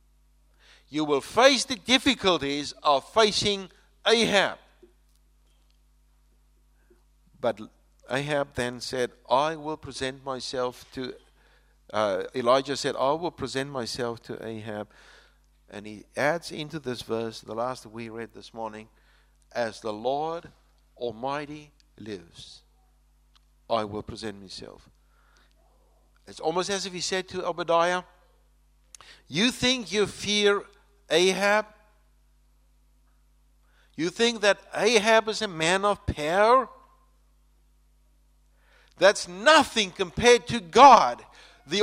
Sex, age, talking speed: male, 60-79, 110 wpm